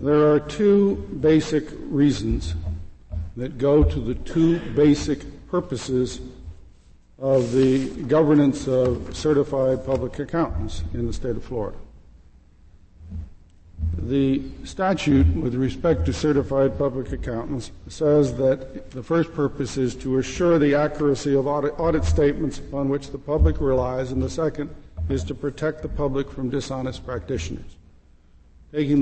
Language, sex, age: English, male, 60-79